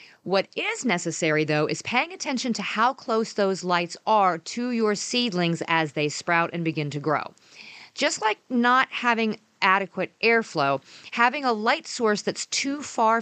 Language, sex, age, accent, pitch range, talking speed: English, female, 40-59, American, 170-235 Hz, 165 wpm